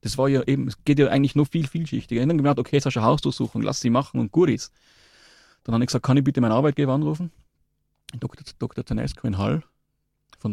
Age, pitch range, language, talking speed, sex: 30-49, 110-140 Hz, German, 230 wpm, male